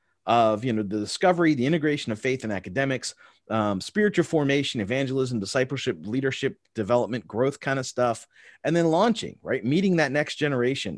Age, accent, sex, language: 30-49, American, male, English